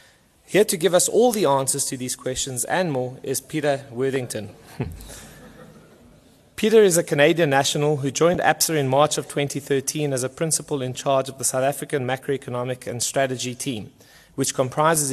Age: 30-49